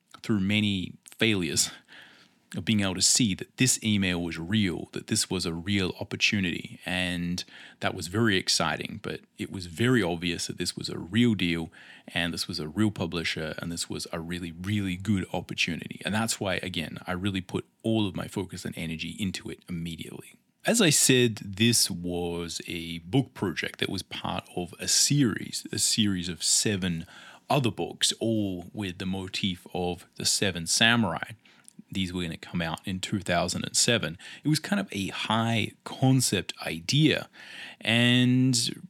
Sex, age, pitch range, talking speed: male, 30-49, 90-115 Hz, 170 wpm